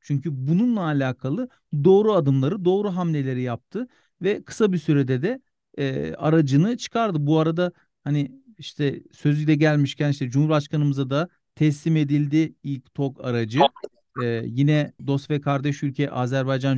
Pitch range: 135-160 Hz